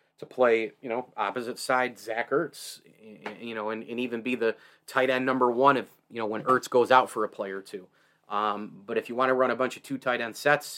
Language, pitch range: English, 110-130 Hz